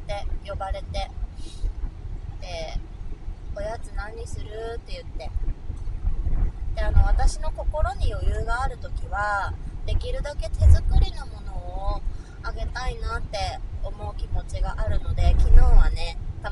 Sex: female